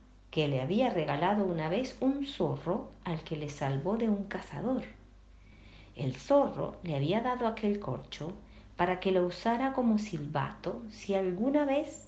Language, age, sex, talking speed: Spanish, 40-59, female, 155 wpm